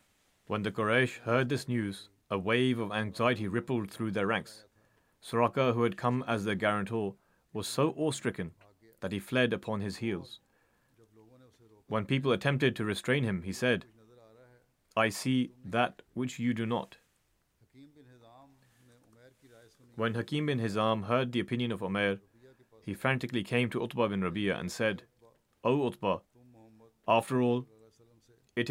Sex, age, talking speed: male, 30-49, 140 wpm